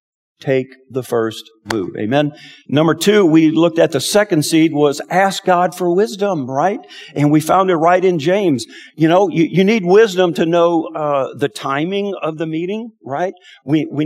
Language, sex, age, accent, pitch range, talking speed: English, male, 50-69, American, 140-185 Hz, 185 wpm